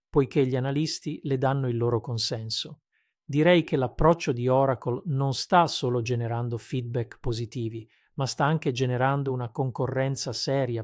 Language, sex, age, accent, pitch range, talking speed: Italian, male, 40-59, native, 120-145 Hz, 145 wpm